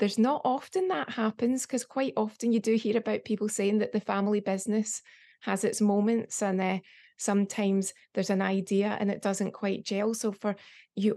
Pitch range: 185-220 Hz